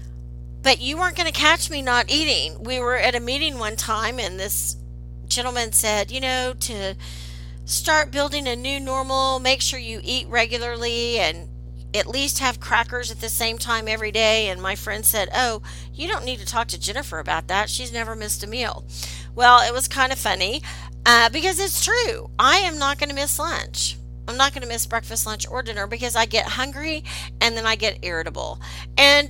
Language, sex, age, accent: English, female, 40-59, American